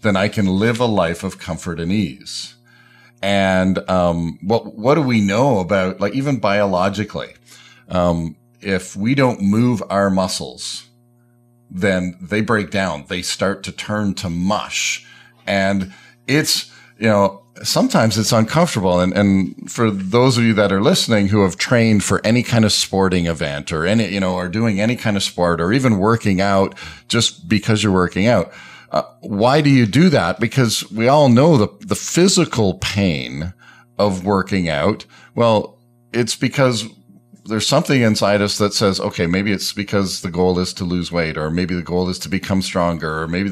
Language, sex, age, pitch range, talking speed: English, male, 40-59, 95-115 Hz, 175 wpm